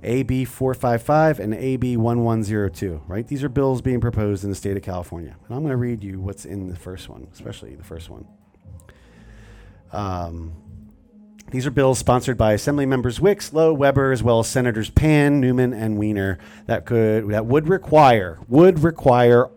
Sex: male